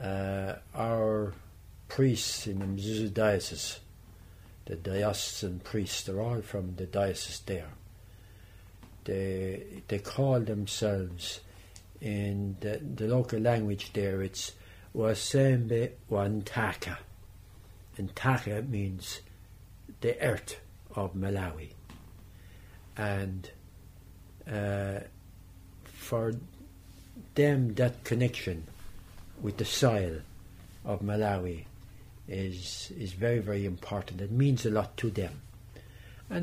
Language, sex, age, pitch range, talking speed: English, male, 60-79, 95-110 Hz, 95 wpm